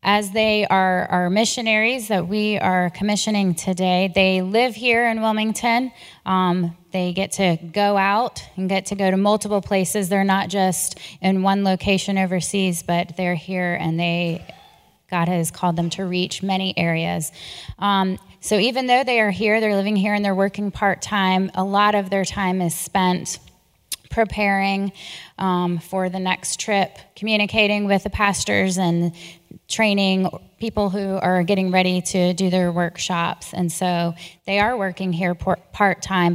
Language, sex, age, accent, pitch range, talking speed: English, female, 10-29, American, 175-200 Hz, 160 wpm